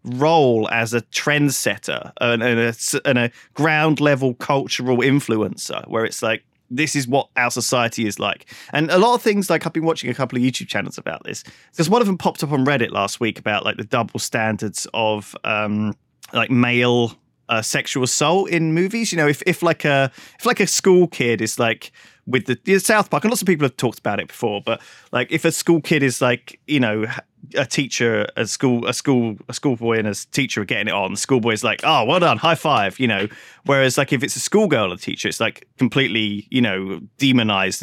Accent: British